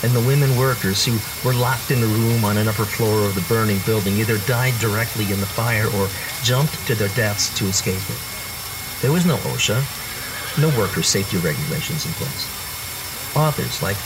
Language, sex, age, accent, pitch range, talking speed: English, male, 50-69, American, 105-130 Hz, 190 wpm